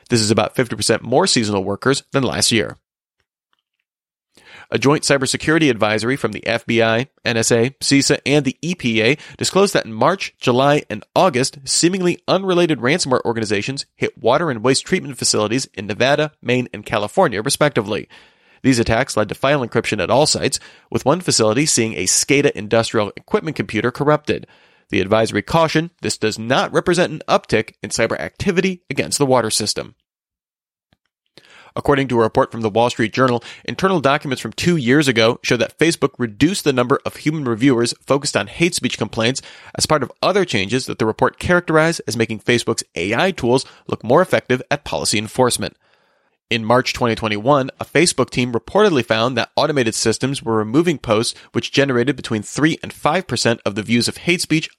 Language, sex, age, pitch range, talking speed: English, male, 30-49, 115-145 Hz, 170 wpm